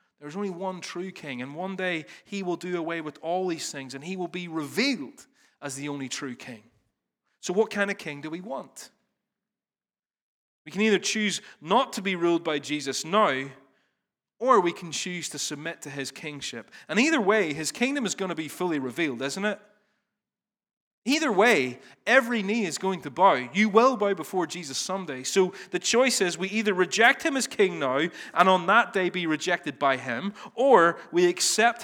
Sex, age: male, 30-49